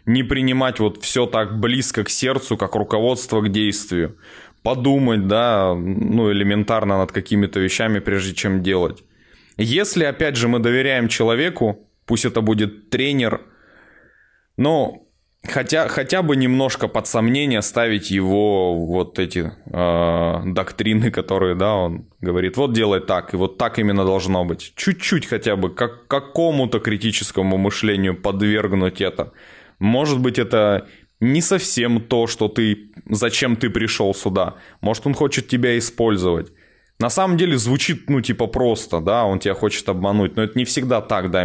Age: 20-39